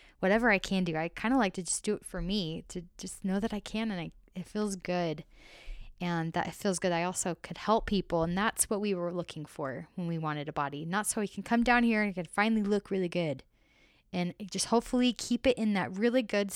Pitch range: 160-195 Hz